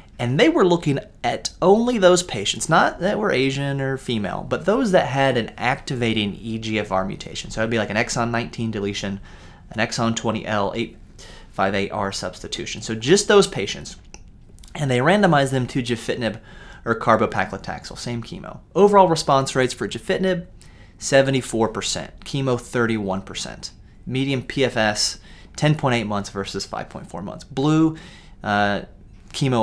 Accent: American